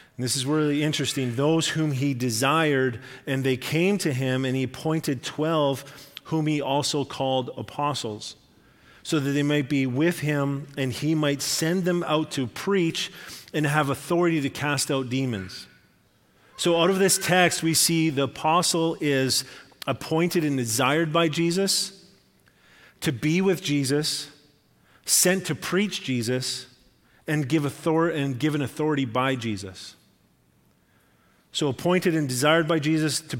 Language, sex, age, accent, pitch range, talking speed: English, male, 40-59, American, 130-155 Hz, 145 wpm